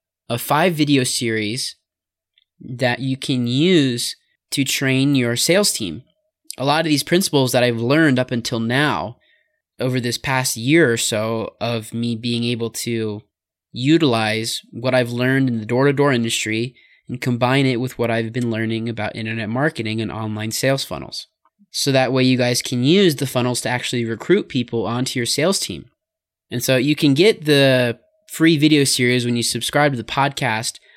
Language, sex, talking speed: English, male, 175 wpm